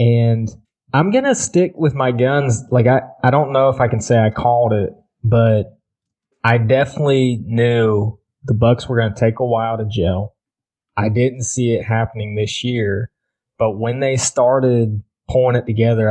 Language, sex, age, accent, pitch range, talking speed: English, male, 20-39, American, 110-130 Hz, 180 wpm